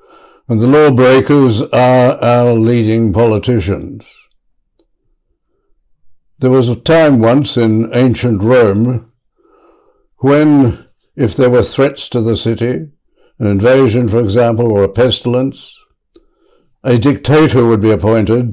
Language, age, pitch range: English, 60-79, 110-125 Hz